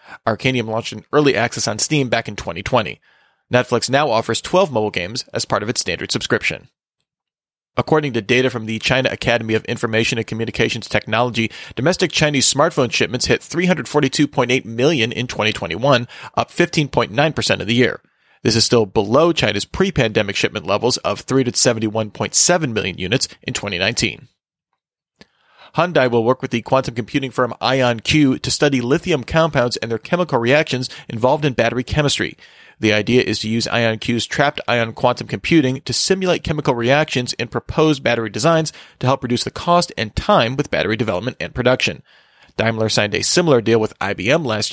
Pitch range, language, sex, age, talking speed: 115-140 Hz, English, male, 30-49, 160 wpm